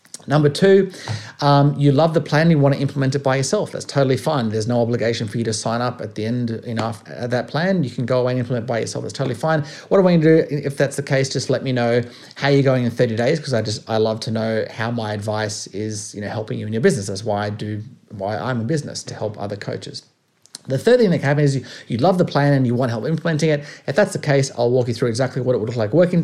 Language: English